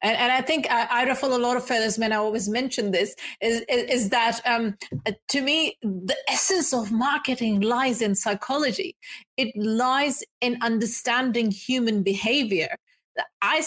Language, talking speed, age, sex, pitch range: English, 165 wpm, 30-49, female, 210-270 Hz